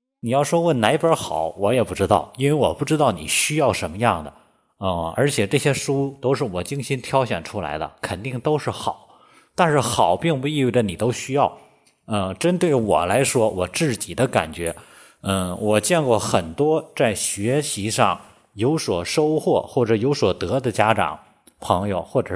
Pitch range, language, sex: 105-145 Hz, Chinese, male